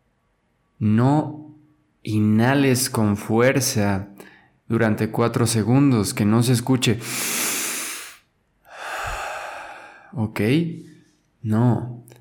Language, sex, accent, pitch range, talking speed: Spanish, male, Mexican, 105-125 Hz, 65 wpm